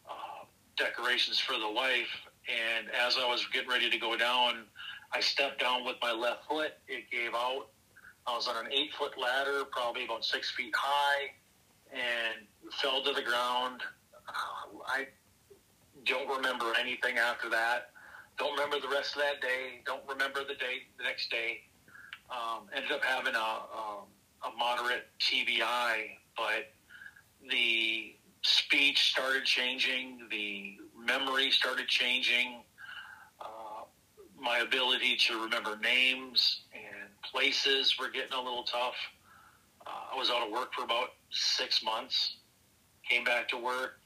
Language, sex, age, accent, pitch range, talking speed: English, male, 40-59, American, 115-130 Hz, 145 wpm